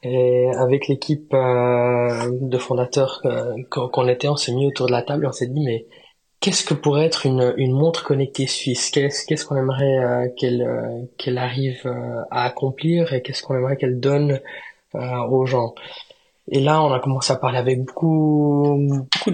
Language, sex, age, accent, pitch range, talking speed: French, male, 20-39, French, 125-145 Hz, 175 wpm